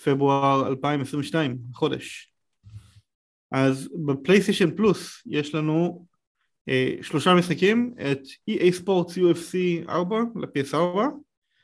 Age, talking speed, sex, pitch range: 30-49, 95 wpm, male, 130-175 Hz